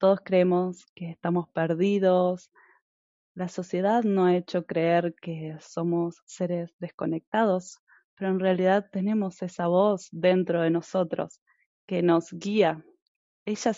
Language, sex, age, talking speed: Spanish, female, 20-39, 120 wpm